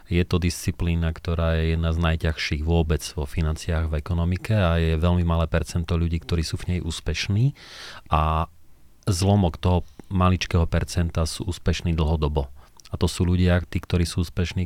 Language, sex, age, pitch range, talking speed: Slovak, male, 40-59, 80-90 Hz, 165 wpm